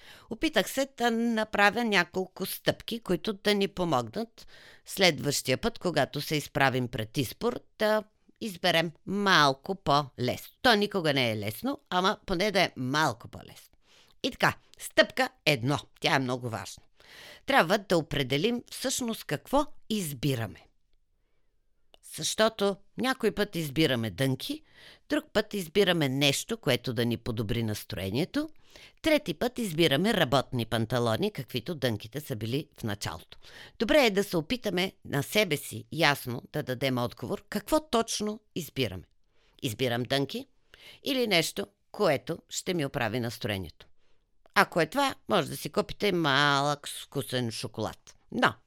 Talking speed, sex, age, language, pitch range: 130 wpm, female, 50-69, Bulgarian, 130-210 Hz